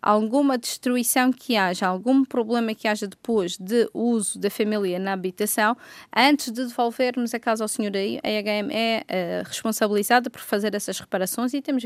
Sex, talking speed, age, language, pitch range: female, 170 wpm, 20-39, Portuguese, 205-240 Hz